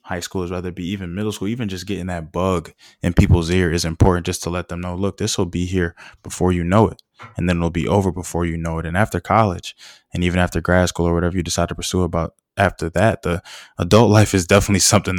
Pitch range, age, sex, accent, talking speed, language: 85-95 Hz, 20-39, male, American, 255 wpm, English